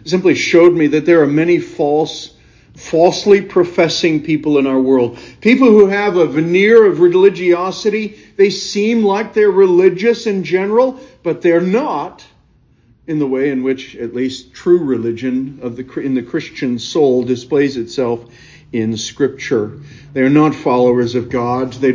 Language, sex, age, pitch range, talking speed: English, male, 50-69, 125-175 Hz, 155 wpm